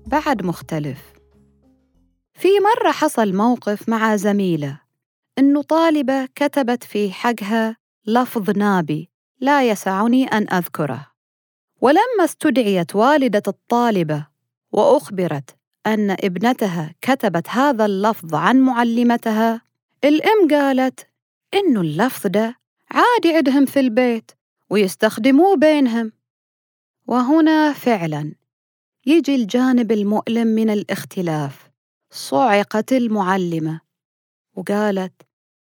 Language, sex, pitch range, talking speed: Arabic, female, 180-265 Hz, 85 wpm